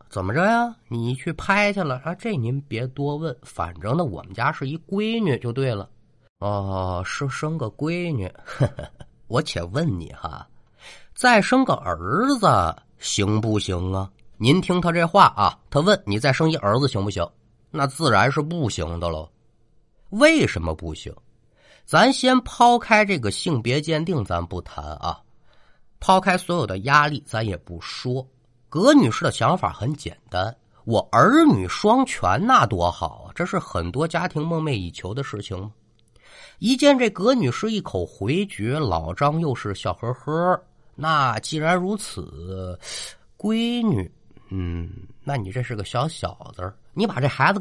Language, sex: Chinese, male